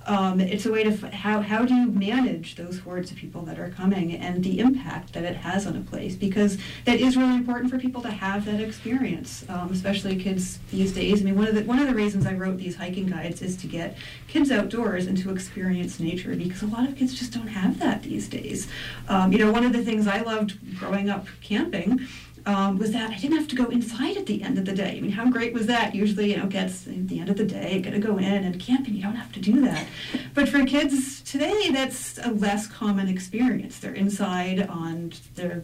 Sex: female